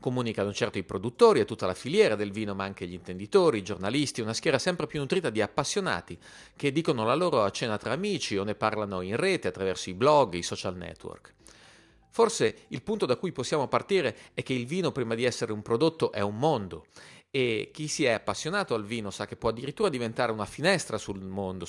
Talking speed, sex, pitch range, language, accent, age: 215 wpm, male, 100-145 Hz, Italian, native, 40-59